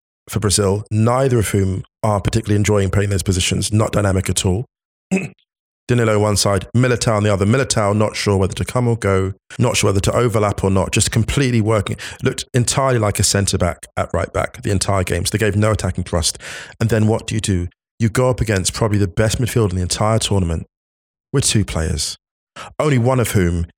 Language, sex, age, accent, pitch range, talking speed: English, male, 20-39, British, 95-115 Hz, 205 wpm